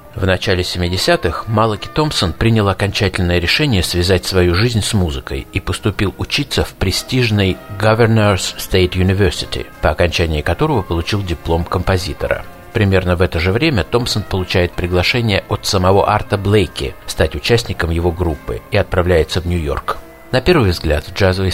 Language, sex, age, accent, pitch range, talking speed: Russian, male, 50-69, native, 85-105 Hz, 145 wpm